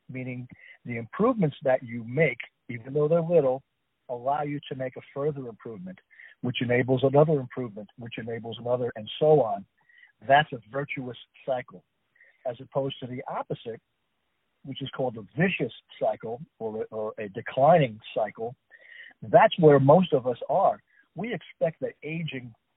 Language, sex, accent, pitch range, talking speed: English, male, American, 125-160 Hz, 150 wpm